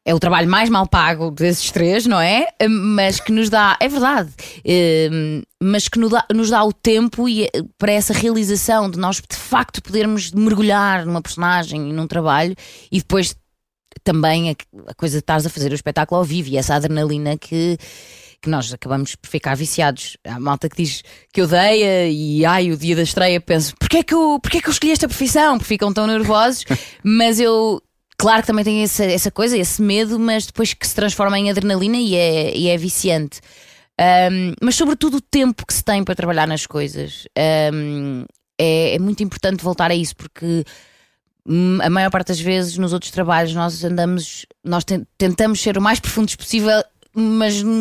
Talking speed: 180 wpm